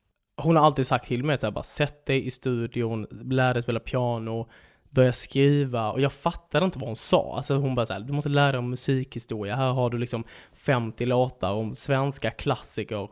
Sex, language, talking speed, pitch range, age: male, English, 200 wpm, 115-140 Hz, 10-29